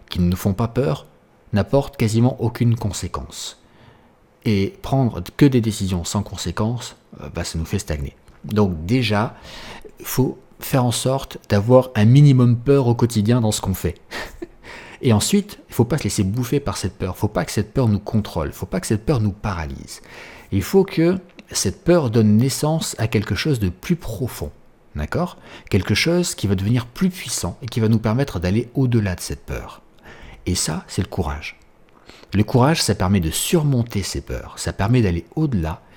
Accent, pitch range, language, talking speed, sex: French, 95-125 Hz, French, 195 wpm, male